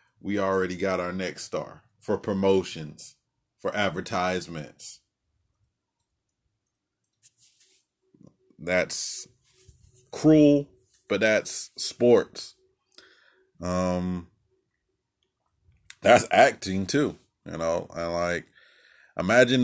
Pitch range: 95-110 Hz